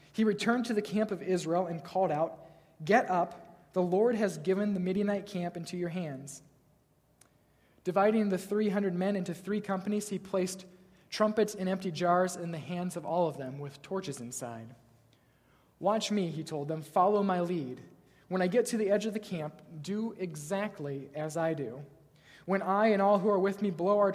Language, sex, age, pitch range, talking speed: English, male, 20-39, 150-200 Hz, 190 wpm